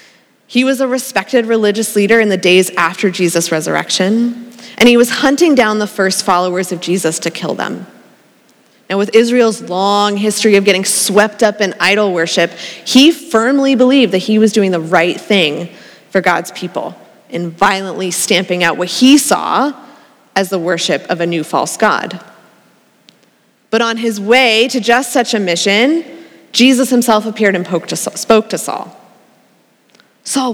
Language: English